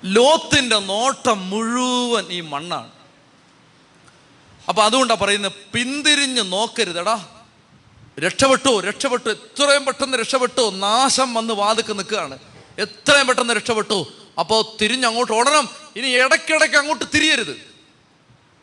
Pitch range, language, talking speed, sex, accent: 175-240 Hz, Malayalam, 90 wpm, male, native